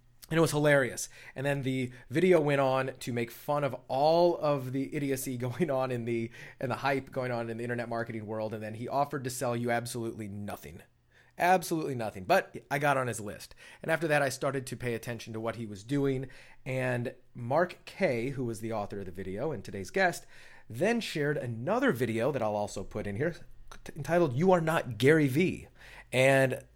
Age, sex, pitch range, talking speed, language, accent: 30-49, male, 120-150 Hz, 205 wpm, English, American